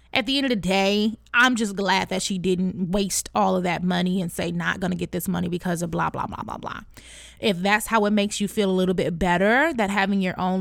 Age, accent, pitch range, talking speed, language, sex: 20-39, American, 190-270 Hz, 265 wpm, English, female